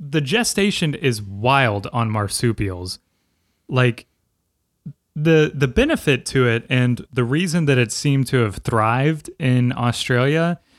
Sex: male